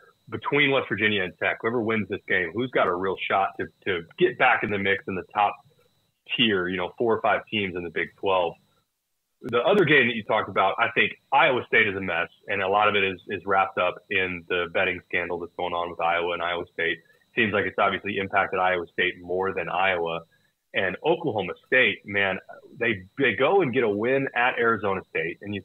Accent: American